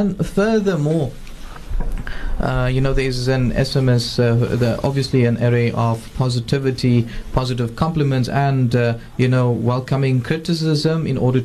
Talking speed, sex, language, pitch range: 135 wpm, male, English, 120-150 Hz